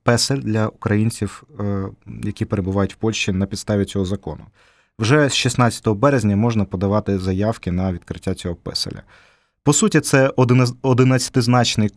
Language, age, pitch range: Ukrainian, 20-39, 100-120 Hz